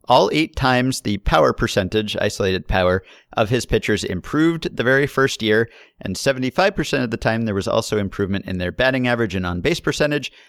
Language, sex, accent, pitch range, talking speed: English, male, American, 90-115 Hz, 185 wpm